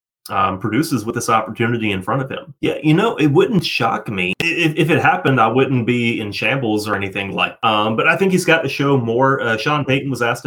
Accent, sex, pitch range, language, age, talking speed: American, male, 115-135 Hz, English, 30-49, 240 wpm